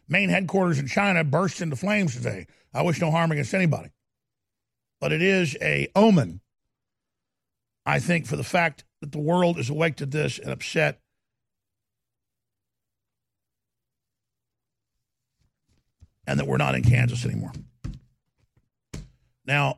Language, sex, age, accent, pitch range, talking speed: English, male, 50-69, American, 115-175 Hz, 125 wpm